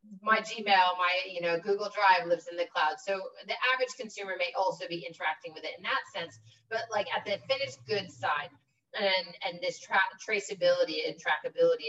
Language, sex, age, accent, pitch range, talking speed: English, female, 30-49, American, 185-255 Hz, 190 wpm